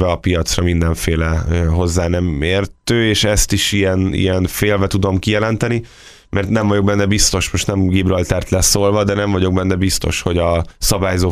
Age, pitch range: 20-39, 85-100 Hz